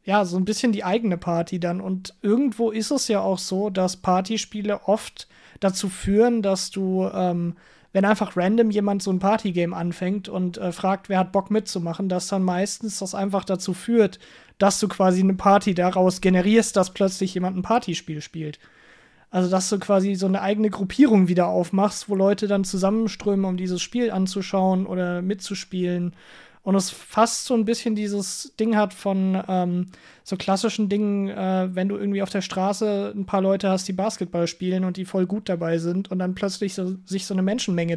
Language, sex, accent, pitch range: English, male, German, 180-205 Hz